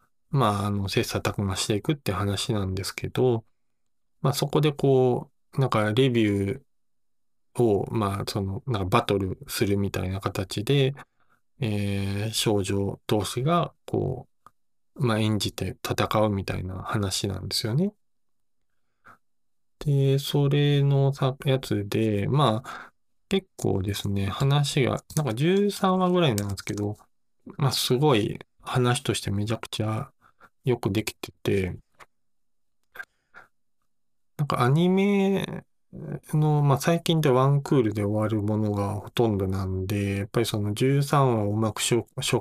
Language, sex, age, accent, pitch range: Japanese, male, 20-39, native, 105-135 Hz